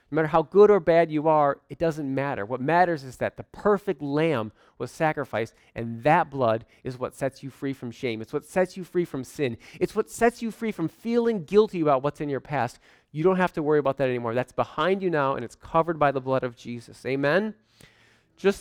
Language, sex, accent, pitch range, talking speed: English, male, American, 120-170 Hz, 230 wpm